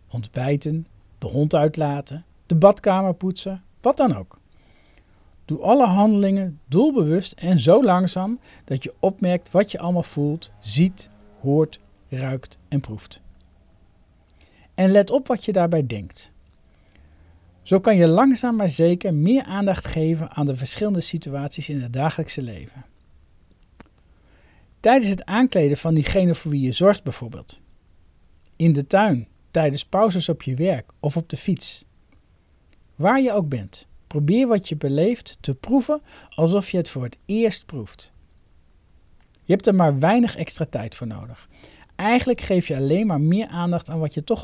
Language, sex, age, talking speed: Dutch, male, 50-69, 150 wpm